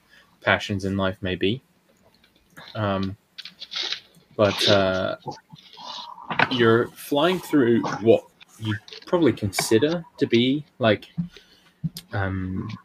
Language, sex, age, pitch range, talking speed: English, male, 20-39, 95-120 Hz, 90 wpm